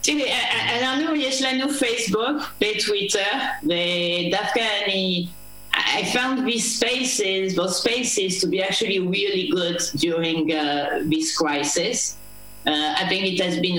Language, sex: Hebrew, female